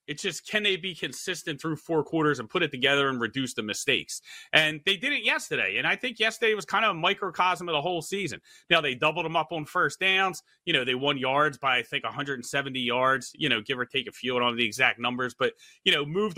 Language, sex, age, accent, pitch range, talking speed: English, male, 30-49, American, 150-210 Hz, 250 wpm